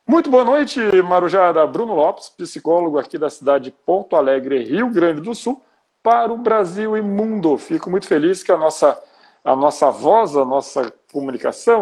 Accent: Brazilian